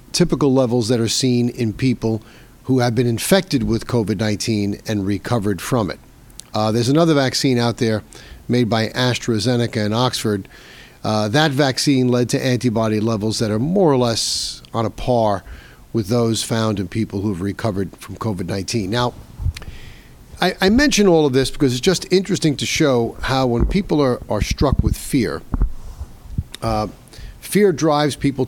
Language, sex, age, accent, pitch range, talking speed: English, male, 50-69, American, 110-135 Hz, 165 wpm